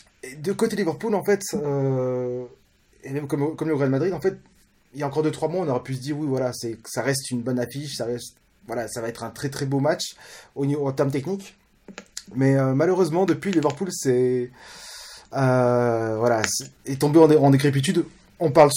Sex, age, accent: male, 20-39, French